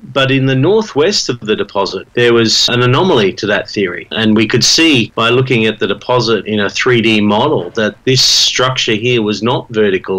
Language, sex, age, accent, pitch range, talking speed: English, male, 40-59, Australian, 105-125 Hz, 200 wpm